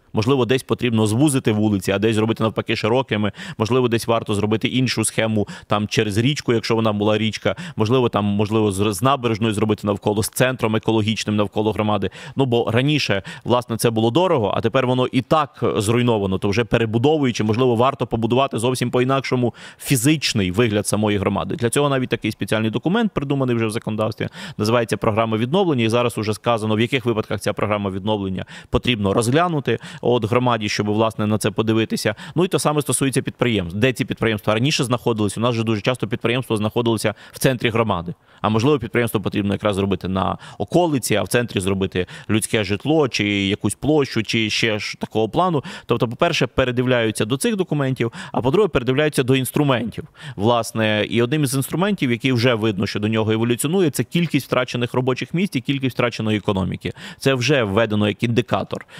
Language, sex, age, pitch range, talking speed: Ukrainian, male, 30-49, 110-130 Hz, 175 wpm